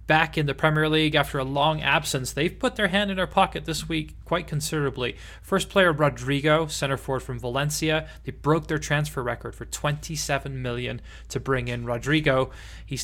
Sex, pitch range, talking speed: male, 130-155 Hz, 185 wpm